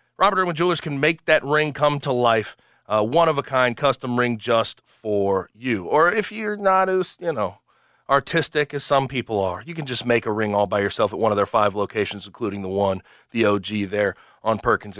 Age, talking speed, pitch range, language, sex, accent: 30-49, 220 wpm, 110-140 Hz, English, male, American